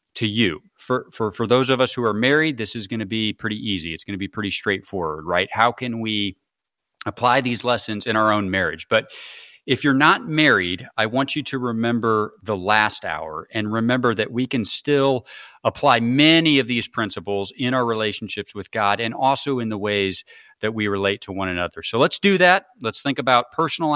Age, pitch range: 40-59, 110-135 Hz